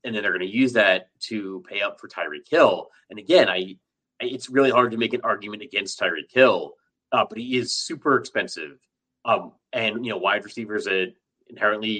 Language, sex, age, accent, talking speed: English, male, 30-49, American, 200 wpm